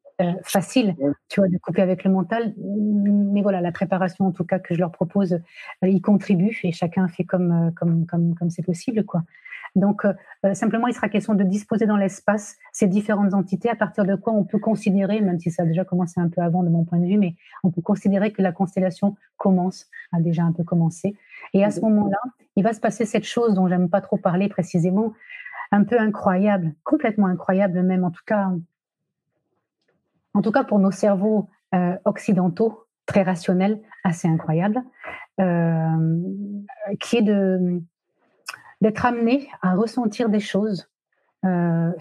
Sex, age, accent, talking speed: female, 30-49, French, 185 wpm